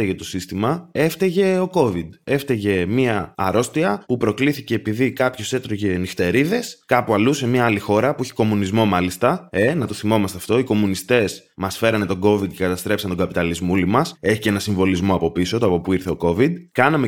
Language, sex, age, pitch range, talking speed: Greek, male, 20-39, 95-125 Hz, 195 wpm